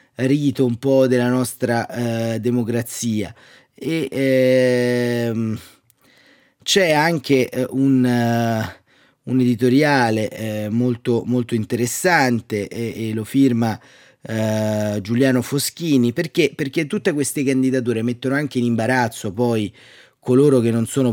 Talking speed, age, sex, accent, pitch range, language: 115 wpm, 30-49, male, native, 115-145 Hz, Italian